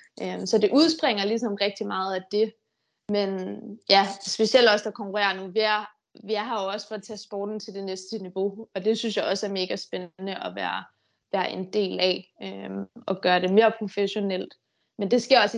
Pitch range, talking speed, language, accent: 195-225 Hz, 200 wpm, Danish, native